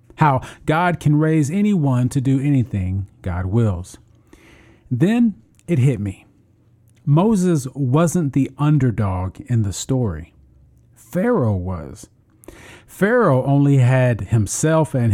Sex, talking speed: male, 110 wpm